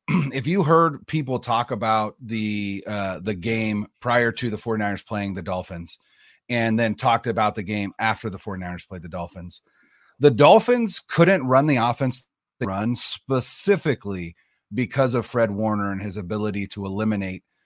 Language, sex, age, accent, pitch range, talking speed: English, male, 30-49, American, 105-135 Hz, 160 wpm